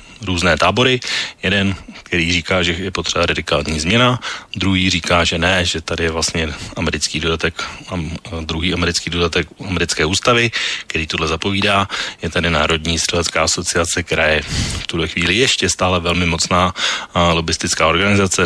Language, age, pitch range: Slovak, 30-49, 85-95 Hz